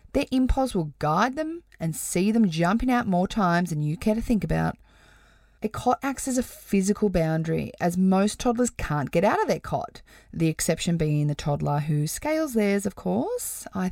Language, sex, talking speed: English, female, 195 wpm